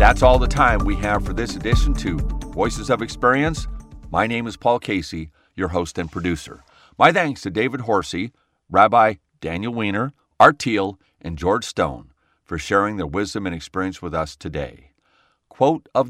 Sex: male